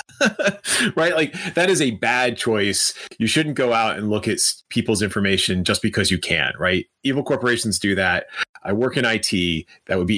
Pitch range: 95-120 Hz